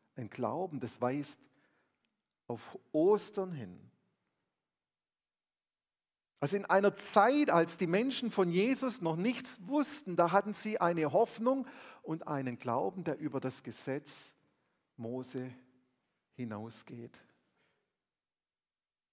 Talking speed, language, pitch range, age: 105 wpm, German, 130-195 Hz, 40-59